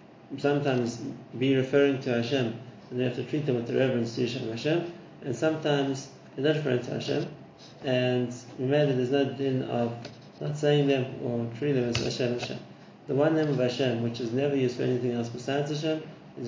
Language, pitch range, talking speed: English, 120-140 Hz, 195 wpm